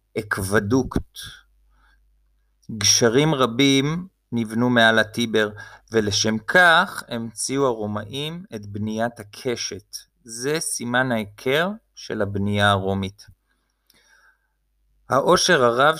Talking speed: 80 wpm